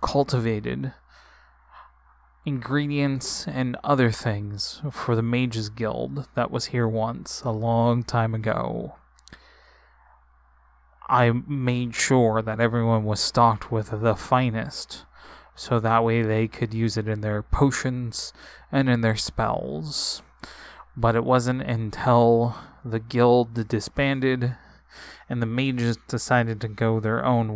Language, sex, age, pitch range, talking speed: English, male, 20-39, 110-125 Hz, 120 wpm